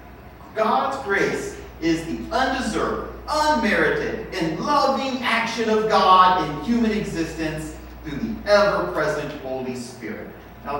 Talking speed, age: 110 wpm, 40-59